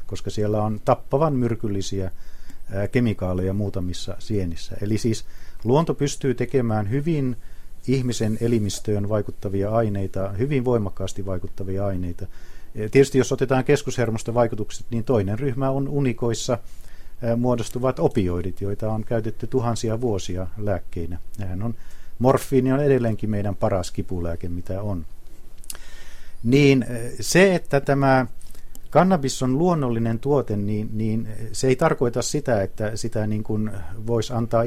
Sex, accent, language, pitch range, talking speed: male, native, Finnish, 100-125 Hz, 120 wpm